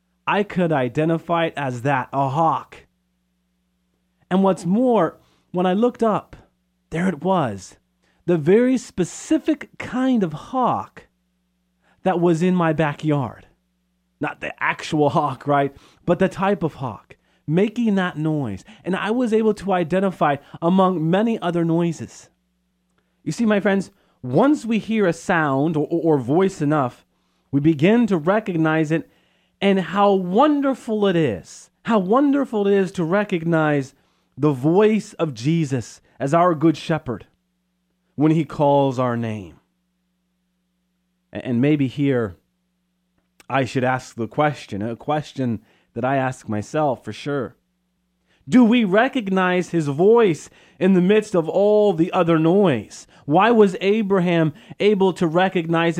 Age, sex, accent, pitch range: 30-49, male, American, 130-190 Hz